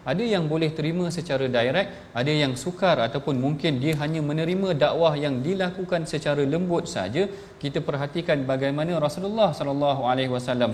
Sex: male